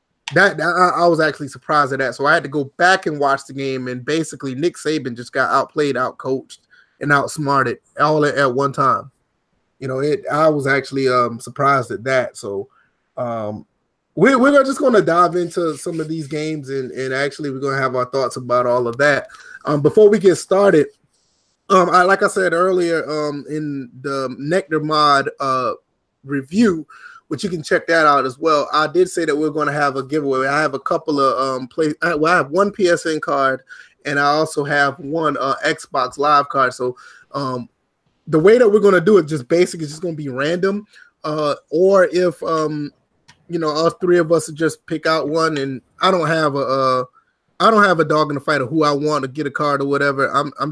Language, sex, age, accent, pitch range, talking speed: English, male, 20-39, American, 135-170 Hz, 220 wpm